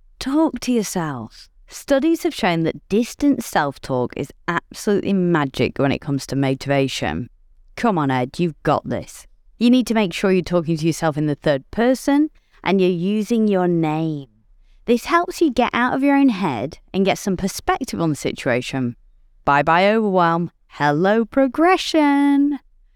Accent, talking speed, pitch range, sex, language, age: British, 160 wpm, 155-240 Hz, female, English, 30-49